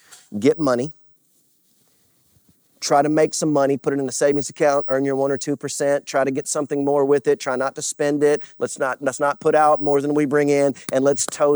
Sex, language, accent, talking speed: male, English, American, 230 wpm